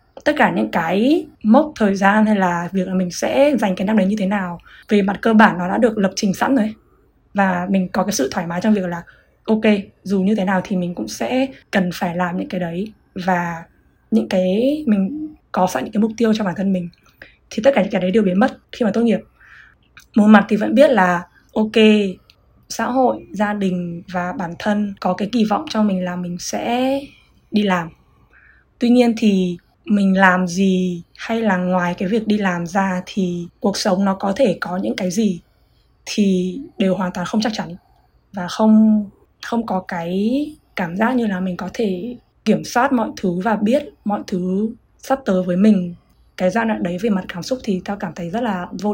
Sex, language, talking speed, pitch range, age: female, Vietnamese, 220 wpm, 185-220 Hz, 20-39